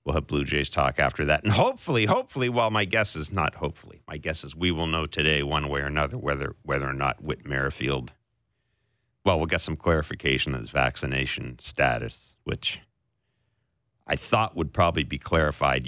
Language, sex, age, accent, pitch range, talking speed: English, male, 50-69, American, 80-110 Hz, 185 wpm